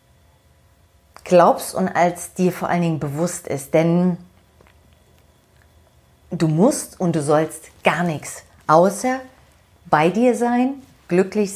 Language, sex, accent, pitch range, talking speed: German, female, German, 140-195 Hz, 115 wpm